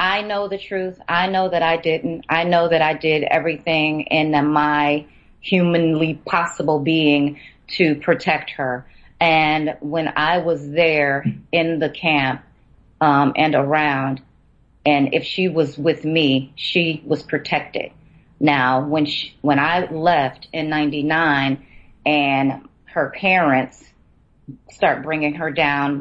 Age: 30-49